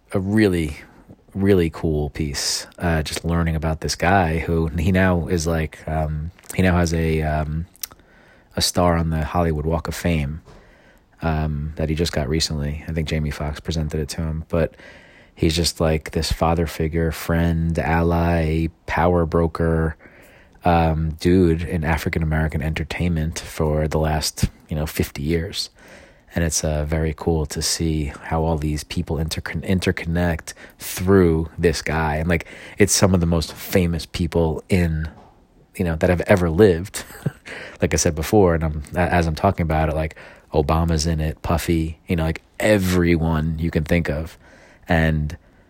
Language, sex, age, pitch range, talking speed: English, male, 30-49, 80-85 Hz, 165 wpm